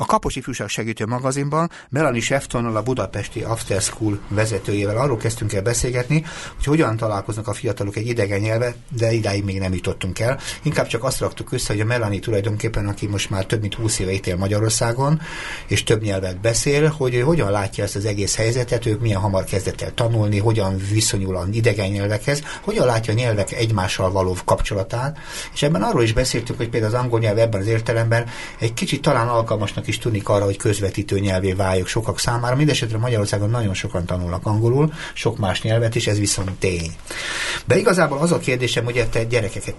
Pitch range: 100-125 Hz